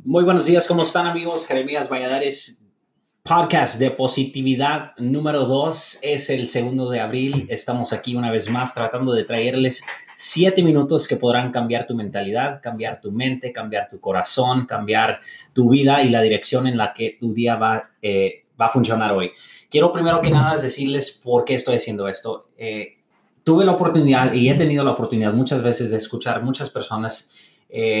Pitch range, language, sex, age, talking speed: 120-140 Hz, English, male, 30-49, 175 wpm